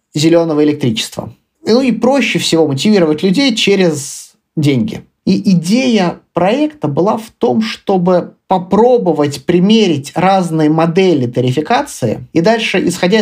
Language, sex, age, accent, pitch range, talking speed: Russian, male, 20-39, native, 150-195 Hz, 115 wpm